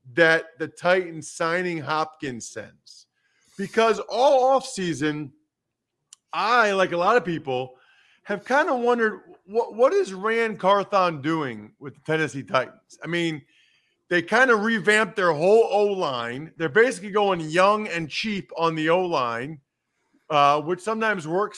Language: English